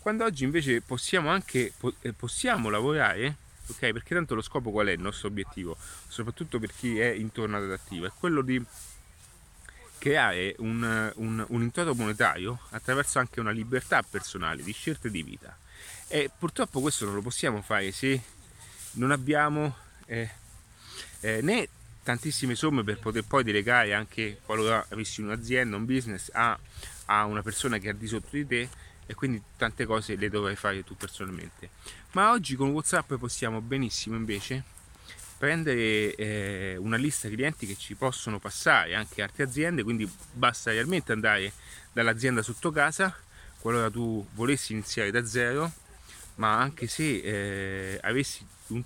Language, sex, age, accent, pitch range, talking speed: Italian, male, 30-49, native, 100-125 Hz, 155 wpm